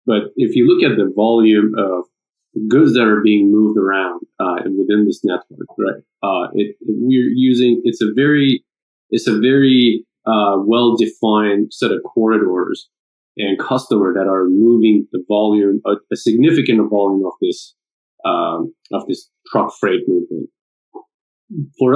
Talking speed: 150 wpm